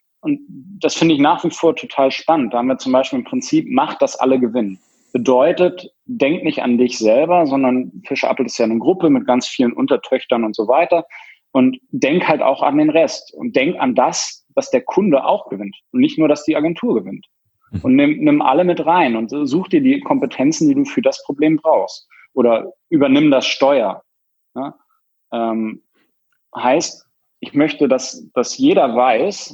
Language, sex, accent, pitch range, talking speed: German, male, German, 120-185 Hz, 185 wpm